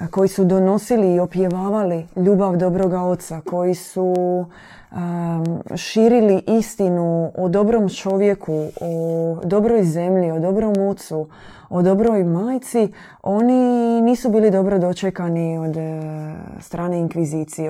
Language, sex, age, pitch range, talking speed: Croatian, female, 20-39, 165-195 Hz, 110 wpm